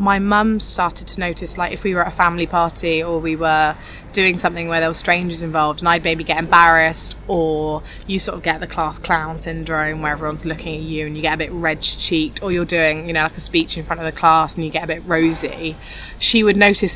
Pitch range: 160-185 Hz